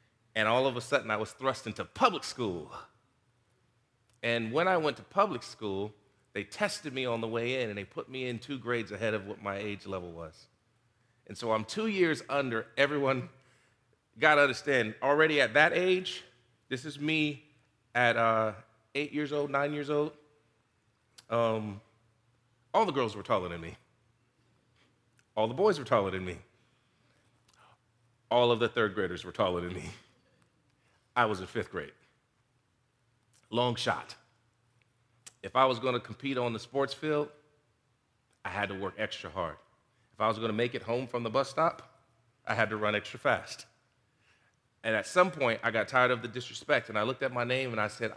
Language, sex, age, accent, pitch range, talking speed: English, male, 40-59, American, 110-130 Hz, 180 wpm